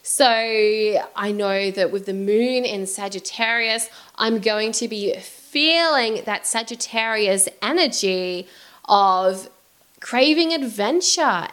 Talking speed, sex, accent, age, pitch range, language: 105 wpm, female, Australian, 20-39, 200-255 Hz, English